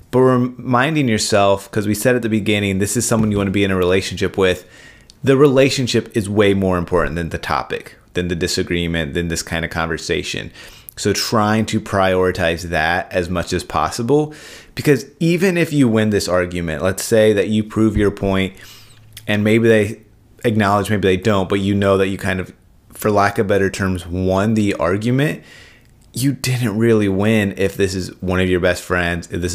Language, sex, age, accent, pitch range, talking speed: English, male, 30-49, American, 90-115 Hz, 195 wpm